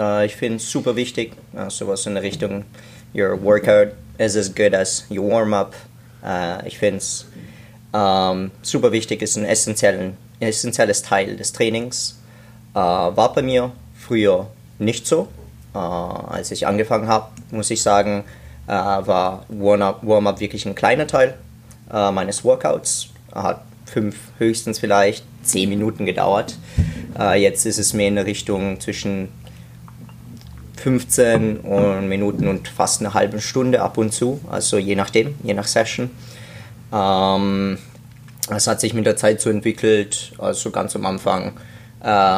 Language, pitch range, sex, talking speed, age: German, 100-115 Hz, male, 150 wpm, 20-39